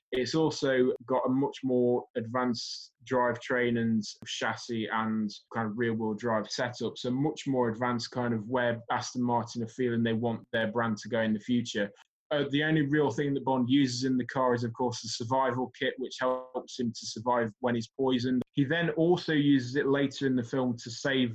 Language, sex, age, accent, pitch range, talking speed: English, male, 20-39, British, 120-135 Hz, 205 wpm